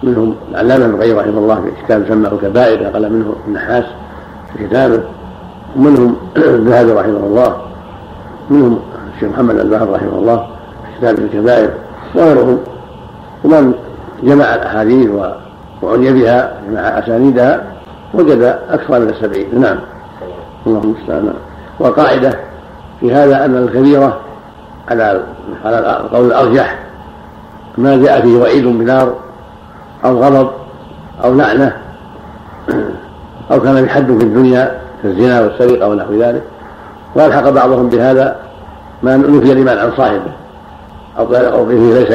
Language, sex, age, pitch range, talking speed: Arabic, male, 60-79, 115-130 Hz, 115 wpm